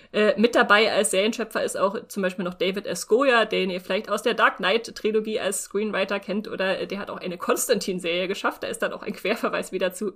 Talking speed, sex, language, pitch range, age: 220 wpm, female, German, 200-245 Hz, 30-49